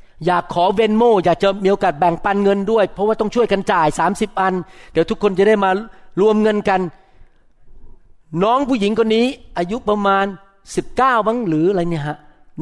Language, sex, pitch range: Thai, male, 170-235 Hz